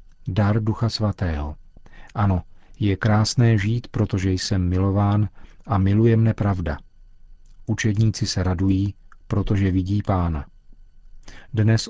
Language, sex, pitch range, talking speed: Czech, male, 95-115 Hz, 105 wpm